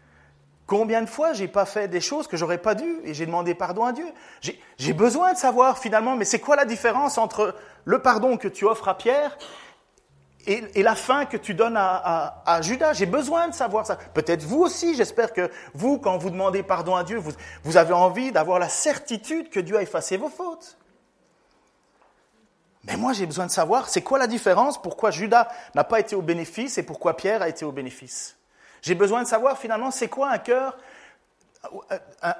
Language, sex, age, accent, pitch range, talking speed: French, male, 30-49, French, 160-245 Hz, 205 wpm